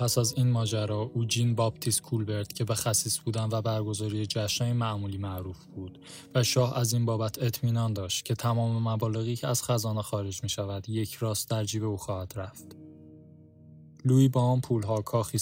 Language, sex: Persian, male